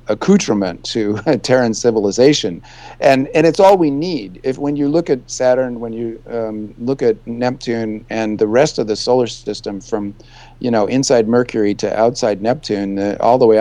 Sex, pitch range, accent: male, 110-135 Hz, American